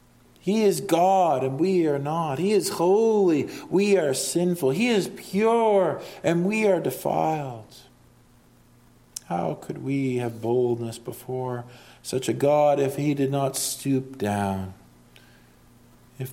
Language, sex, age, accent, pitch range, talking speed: English, male, 40-59, American, 105-145 Hz, 130 wpm